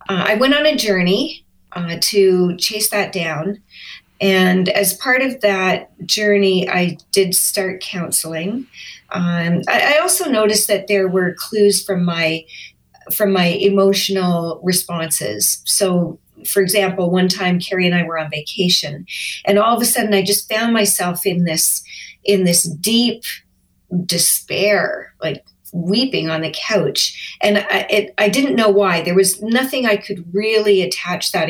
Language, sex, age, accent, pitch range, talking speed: English, female, 40-59, American, 175-210 Hz, 155 wpm